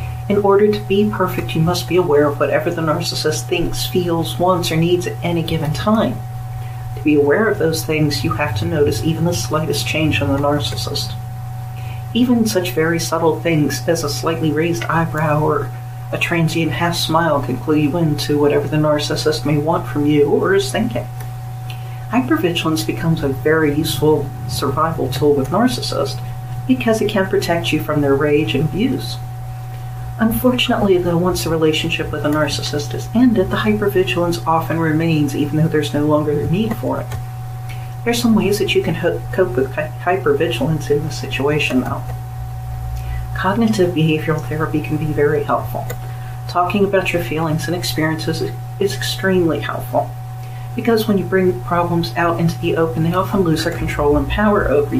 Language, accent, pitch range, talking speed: English, American, 125-165 Hz, 170 wpm